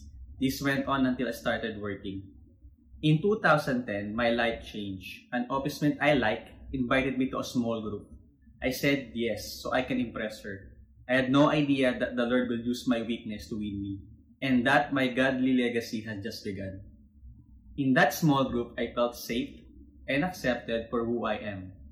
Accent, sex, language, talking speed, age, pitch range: Filipino, male, English, 180 wpm, 20-39, 105-135 Hz